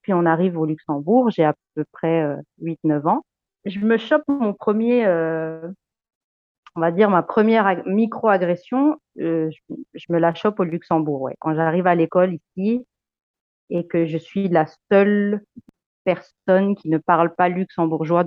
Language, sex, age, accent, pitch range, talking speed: French, female, 30-49, French, 160-215 Hz, 170 wpm